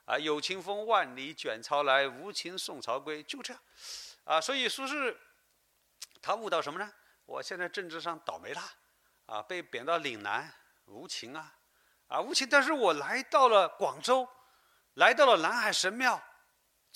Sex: male